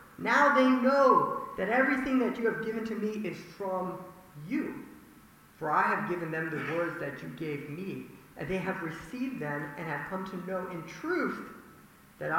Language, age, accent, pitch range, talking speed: English, 50-69, American, 170-225 Hz, 185 wpm